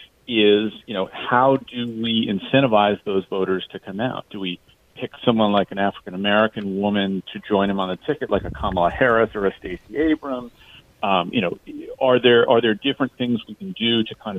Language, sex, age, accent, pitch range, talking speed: English, male, 40-59, American, 95-120 Hz, 205 wpm